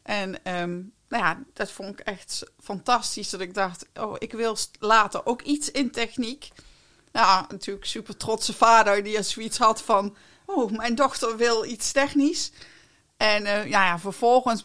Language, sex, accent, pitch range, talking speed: Dutch, female, Dutch, 190-230 Hz, 165 wpm